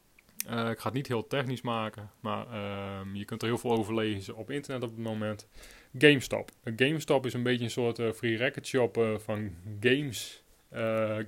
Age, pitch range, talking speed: 30-49, 105-125 Hz, 200 wpm